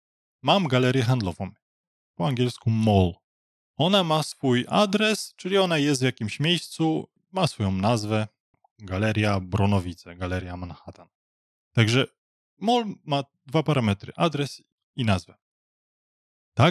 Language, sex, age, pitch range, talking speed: Polish, male, 20-39, 105-145 Hz, 115 wpm